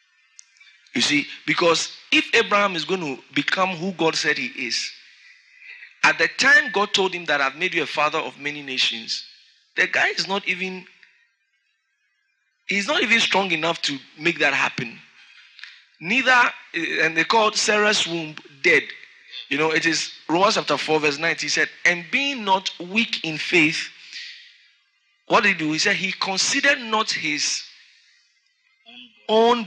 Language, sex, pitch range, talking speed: English, male, 160-235 Hz, 160 wpm